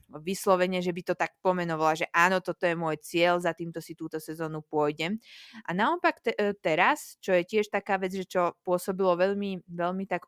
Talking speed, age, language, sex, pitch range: 195 wpm, 20-39, Slovak, female, 170-205 Hz